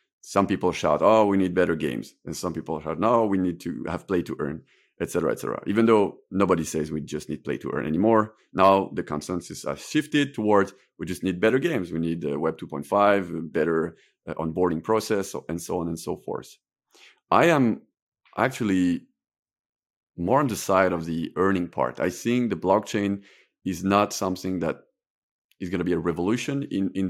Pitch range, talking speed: 85-110 Hz, 185 wpm